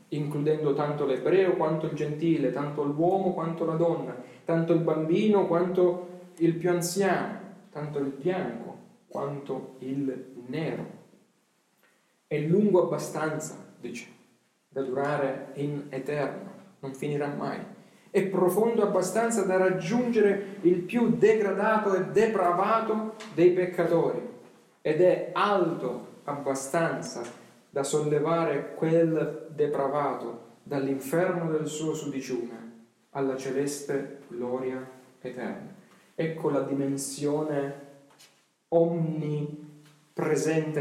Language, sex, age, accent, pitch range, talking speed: Italian, male, 40-59, native, 140-180 Hz, 100 wpm